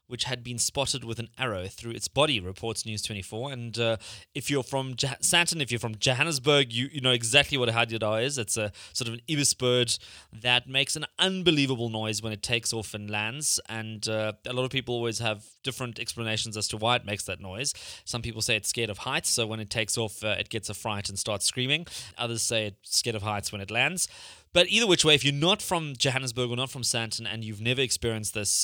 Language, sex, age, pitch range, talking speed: English, male, 20-39, 110-130 Hz, 235 wpm